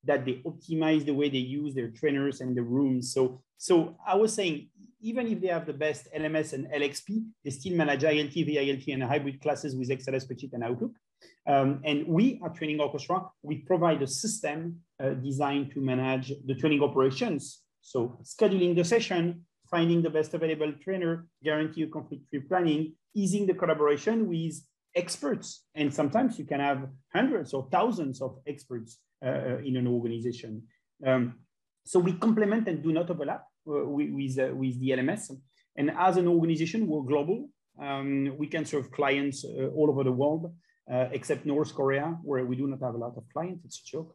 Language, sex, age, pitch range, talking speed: English, male, 40-59, 135-165 Hz, 185 wpm